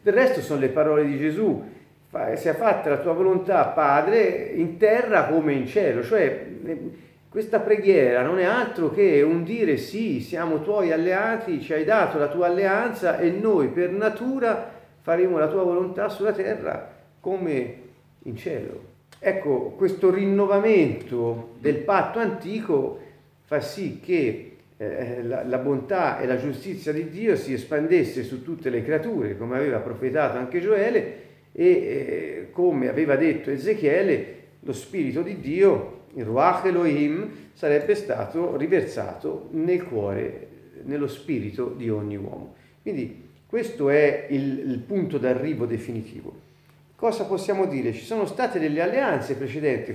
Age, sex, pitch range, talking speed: 40-59, male, 145-220 Hz, 140 wpm